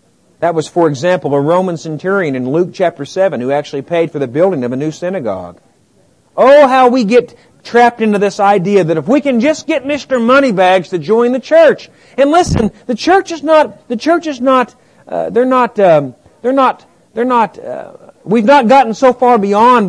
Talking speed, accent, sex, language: 200 wpm, American, male, English